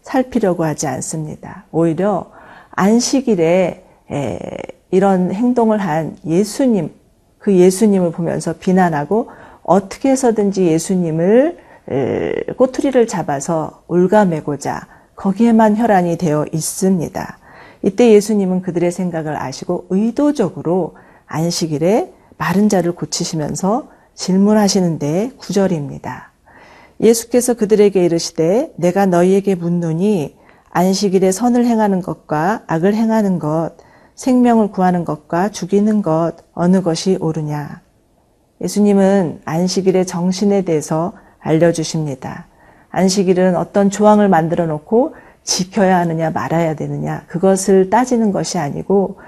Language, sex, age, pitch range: Korean, female, 40-59, 165-210 Hz